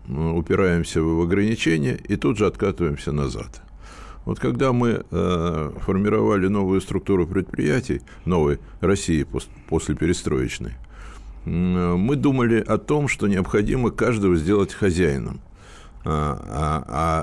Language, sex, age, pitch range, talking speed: Russian, male, 60-79, 85-115 Hz, 100 wpm